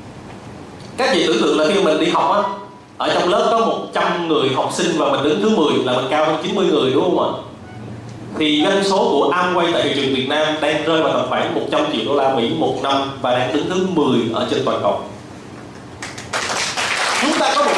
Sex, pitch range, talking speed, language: male, 140-190 Hz, 225 wpm, Vietnamese